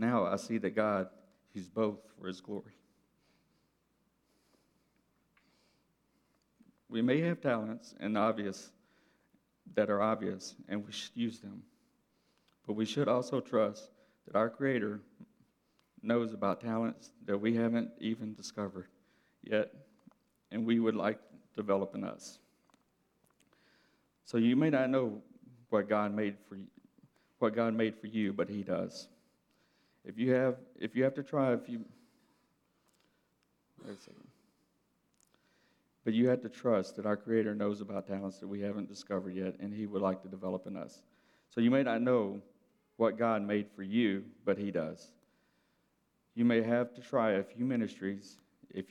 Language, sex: English, male